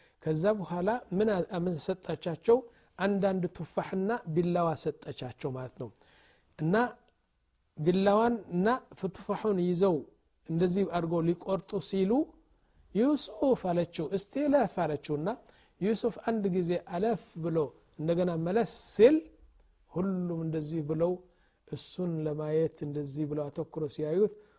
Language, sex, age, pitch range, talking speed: Amharic, male, 50-69, 160-210 Hz, 80 wpm